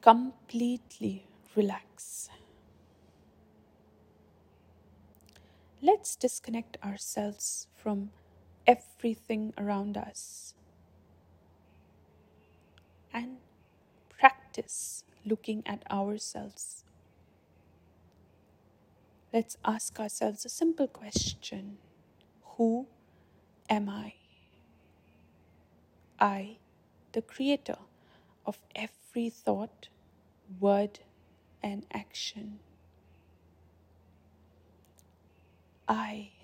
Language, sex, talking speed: English, female, 55 wpm